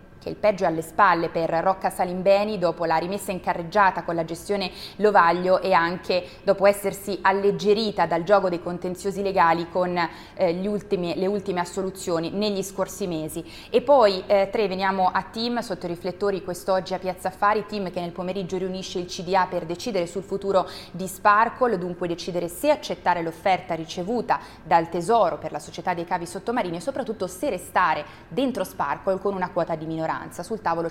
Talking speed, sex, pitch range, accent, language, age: 180 wpm, female, 170-195 Hz, native, Italian, 20-39